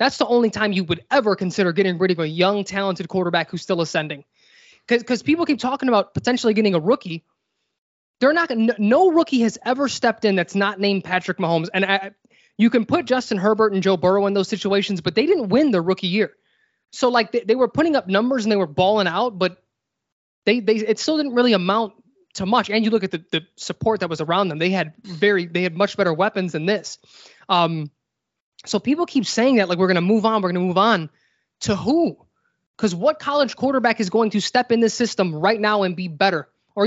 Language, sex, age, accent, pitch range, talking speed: English, male, 20-39, American, 185-245 Hz, 235 wpm